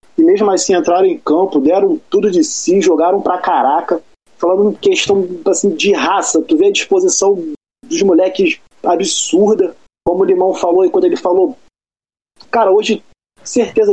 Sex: male